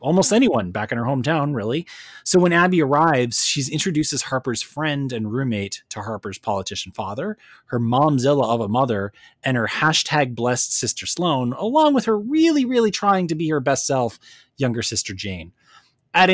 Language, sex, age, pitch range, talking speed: English, male, 30-49, 130-195 Hz, 175 wpm